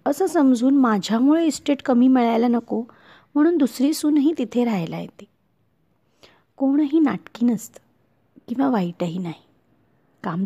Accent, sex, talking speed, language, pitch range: native, female, 115 wpm, Marathi, 185-275 Hz